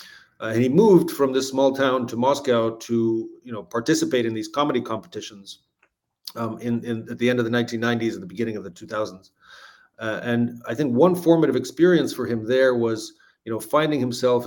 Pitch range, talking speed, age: 110-135 Hz, 200 wpm, 40-59